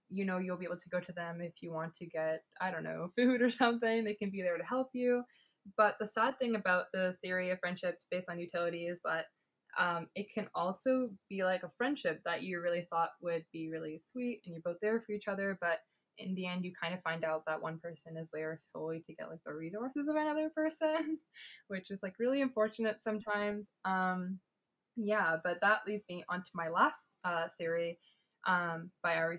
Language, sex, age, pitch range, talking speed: English, female, 20-39, 175-215 Hz, 220 wpm